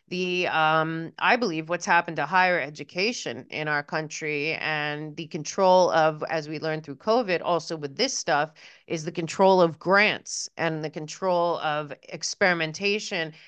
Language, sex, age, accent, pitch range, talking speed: English, female, 30-49, American, 160-200 Hz, 155 wpm